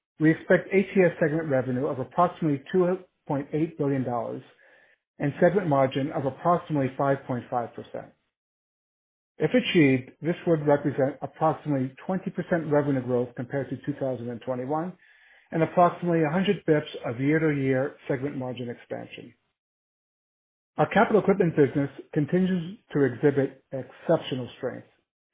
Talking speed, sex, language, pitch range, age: 105 wpm, male, English, 130-160 Hz, 50-69